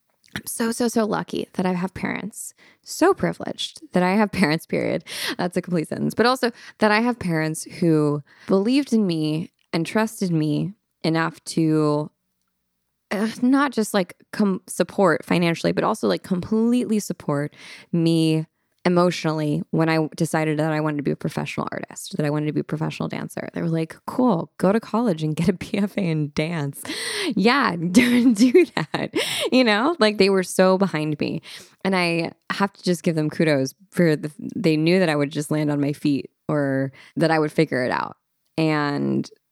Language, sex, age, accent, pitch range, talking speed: English, female, 20-39, American, 150-195 Hz, 180 wpm